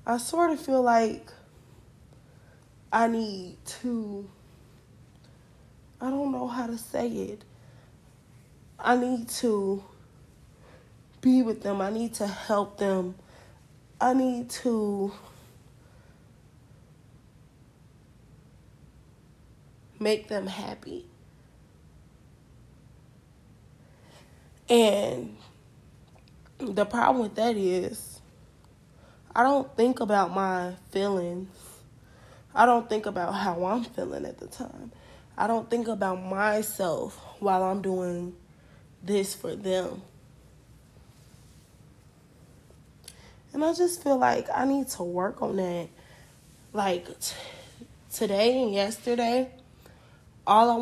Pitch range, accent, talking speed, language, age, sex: 180-235 Hz, American, 95 wpm, English, 20-39, female